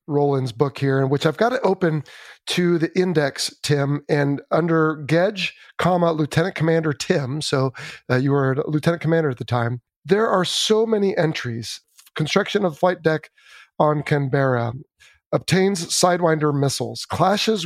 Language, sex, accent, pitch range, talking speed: English, male, American, 145-175 Hz, 155 wpm